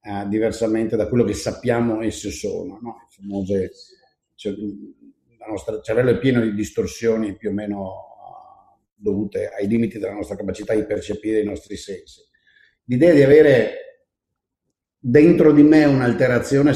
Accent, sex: native, male